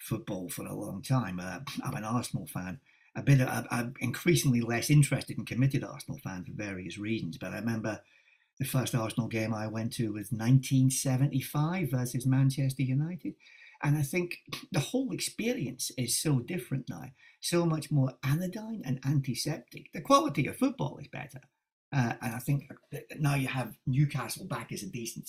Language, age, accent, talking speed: English, 50-69, British, 175 wpm